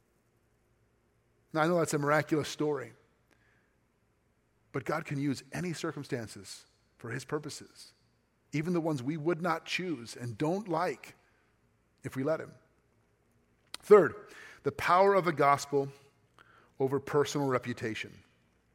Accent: American